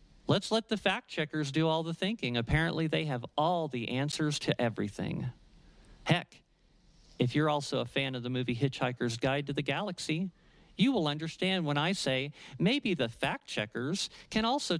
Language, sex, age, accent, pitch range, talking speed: English, male, 50-69, American, 135-185 Hz, 165 wpm